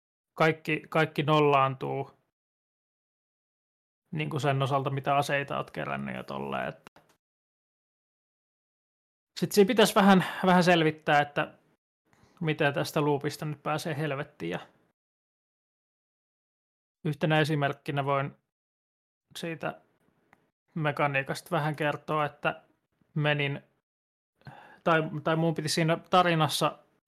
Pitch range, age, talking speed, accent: 145-160 Hz, 20-39, 90 wpm, native